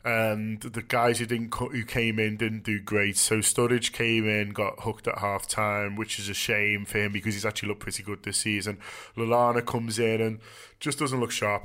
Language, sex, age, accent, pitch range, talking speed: English, male, 20-39, British, 105-125 Hz, 210 wpm